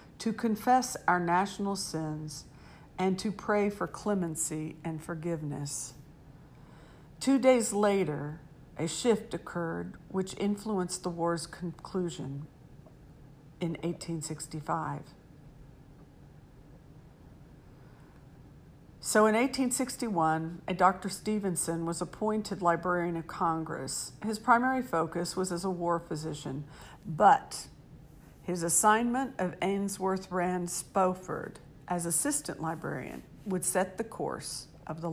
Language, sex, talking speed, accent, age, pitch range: English, female, 100 wpm, American, 50-69, 155-195 Hz